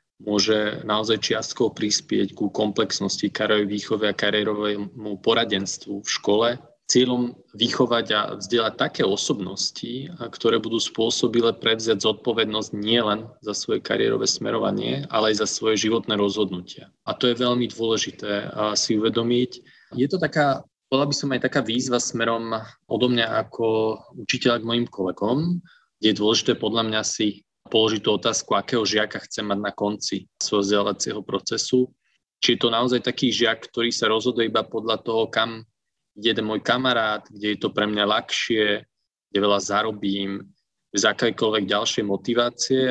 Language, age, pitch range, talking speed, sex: Slovak, 20-39, 105-120 Hz, 145 wpm, male